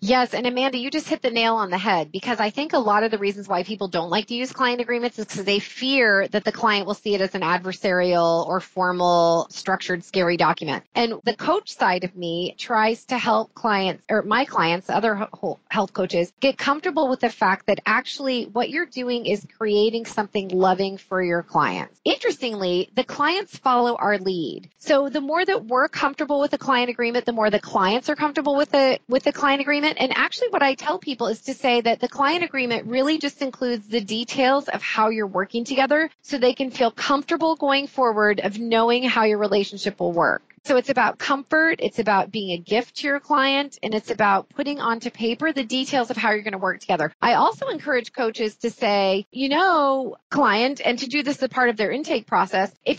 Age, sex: 30-49, female